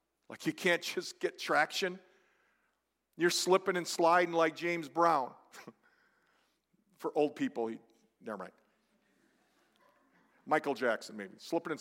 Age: 50-69